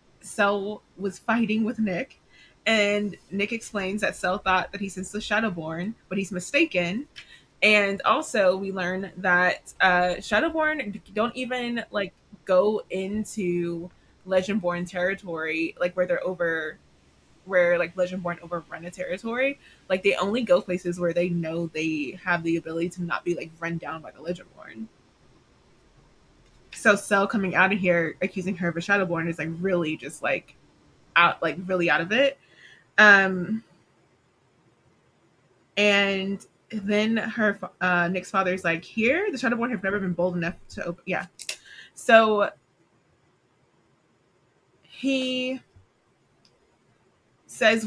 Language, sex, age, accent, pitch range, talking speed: English, female, 20-39, American, 175-210 Hz, 135 wpm